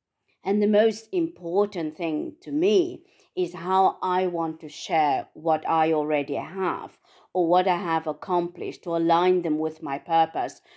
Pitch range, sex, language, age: 160-250 Hz, female, English, 40-59